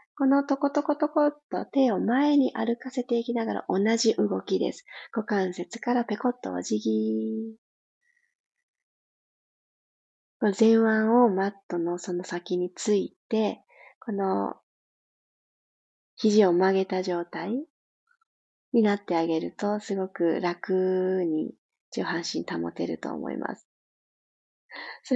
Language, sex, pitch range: Japanese, female, 190-260 Hz